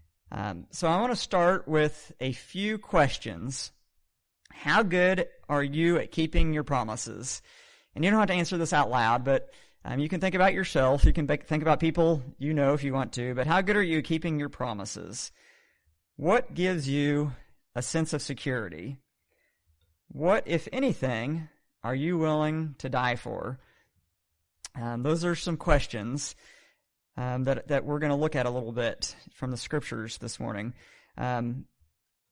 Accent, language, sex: American, English, male